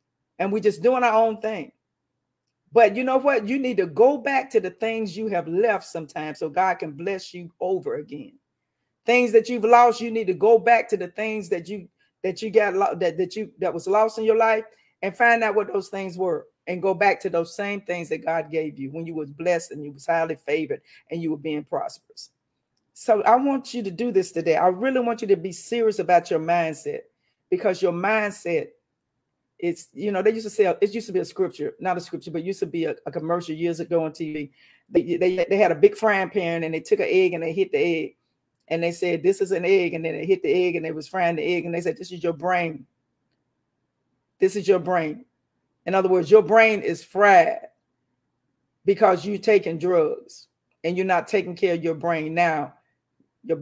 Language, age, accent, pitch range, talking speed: English, 40-59, American, 170-220 Hz, 230 wpm